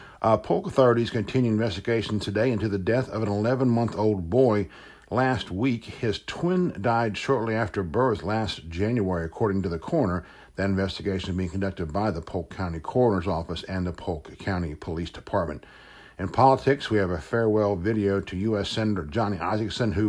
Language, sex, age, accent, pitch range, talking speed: English, male, 60-79, American, 95-115 Hz, 170 wpm